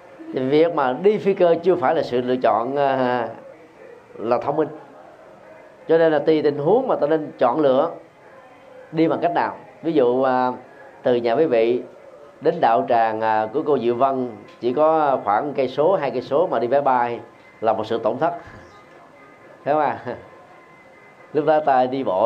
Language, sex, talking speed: Vietnamese, male, 180 wpm